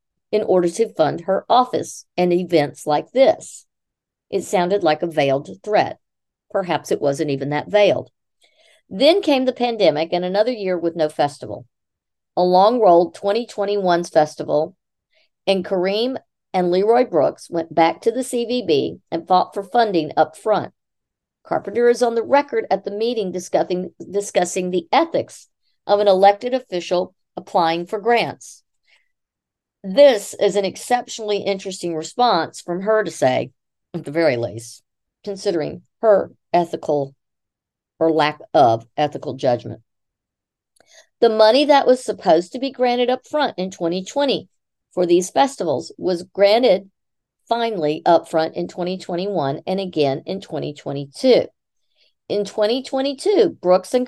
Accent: American